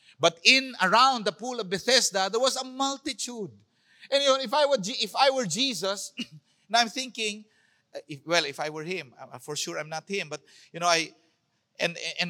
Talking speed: 220 wpm